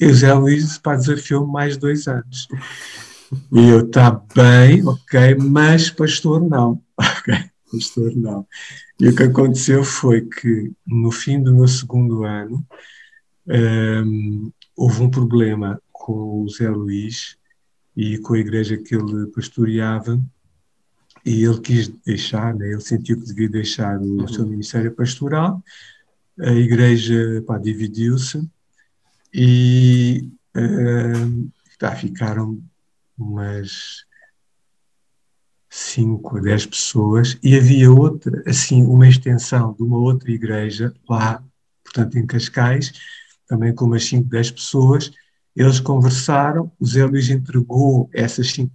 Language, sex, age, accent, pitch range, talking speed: Portuguese, male, 50-69, Brazilian, 115-140 Hz, 120 wpm